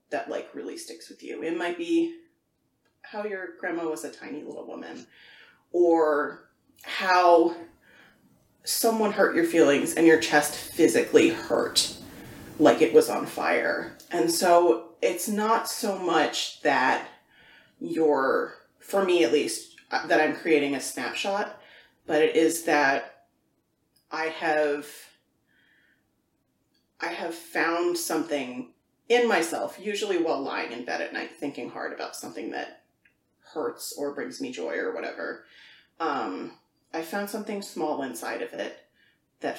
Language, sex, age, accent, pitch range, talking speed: English, female, 30-49, American, 155-205 Hz, 135 wpm